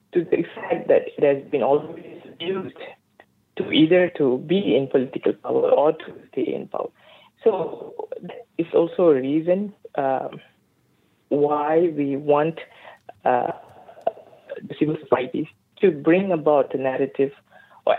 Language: English